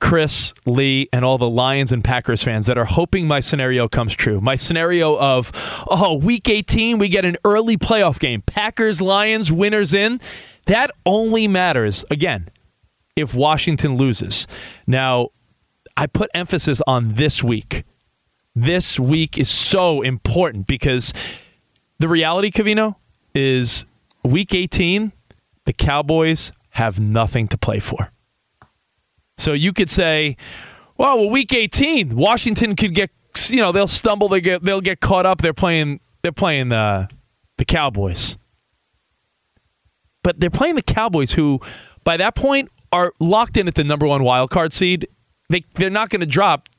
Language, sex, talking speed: English, male, 150 wpm